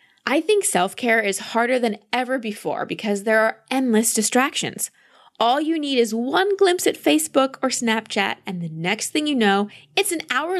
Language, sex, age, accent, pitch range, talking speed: English, female, 20-39, American, 180-240 Hz, 180 wpm